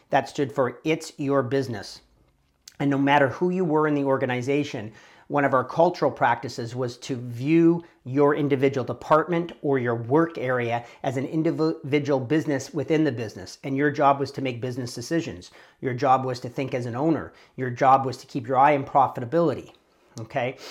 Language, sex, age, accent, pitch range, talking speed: English, male, 40-59, American, 130-150 Hz, 185 wpm